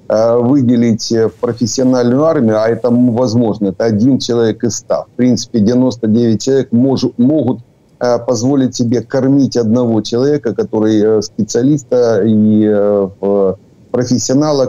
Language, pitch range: Ukrainian, 110-125 Hz